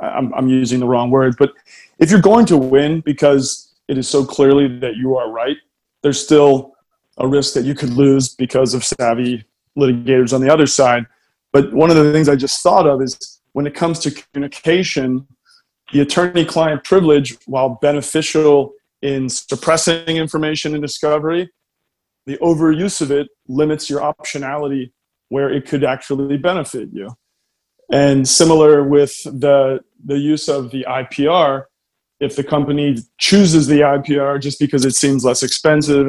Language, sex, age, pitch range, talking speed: English, male, 30-49, 130-150 Hz, 160 wpm